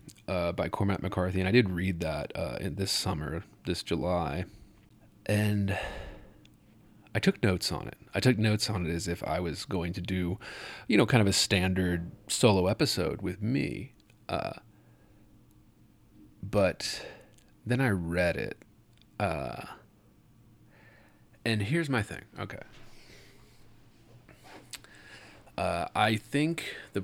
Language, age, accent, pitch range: English, 30-49, American, 90-105 Hz